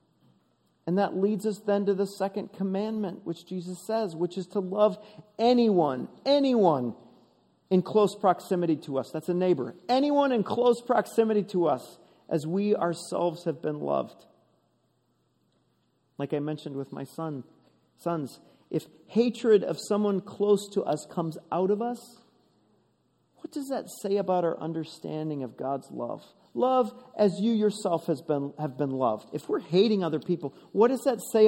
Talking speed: 160 wpm